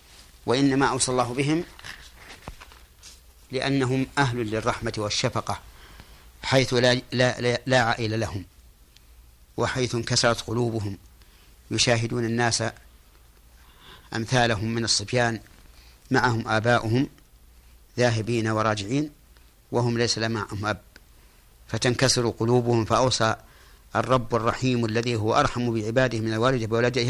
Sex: male